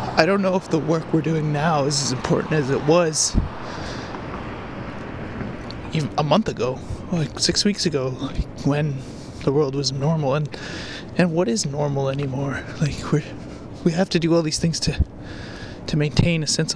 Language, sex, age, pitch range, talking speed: English, male, 20-39, 130-160 Hz, 175 wpm